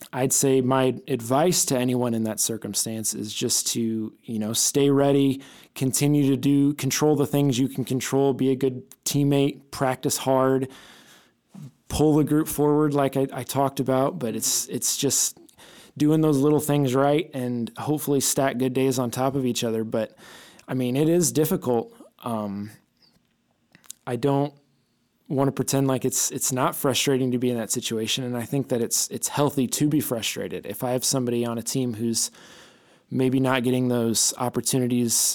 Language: English